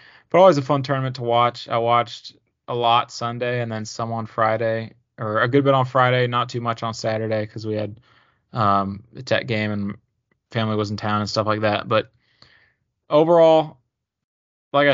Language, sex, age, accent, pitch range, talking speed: English, male, 20-39, American, 115-130 Hz, 190 wpm